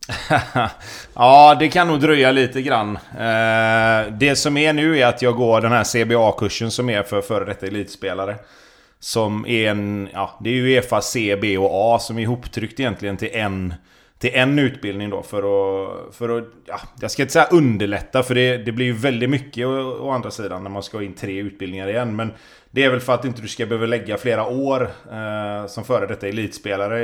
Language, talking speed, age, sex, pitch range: Swedish, 205 wpm, 30-49, male, 100-125 Hz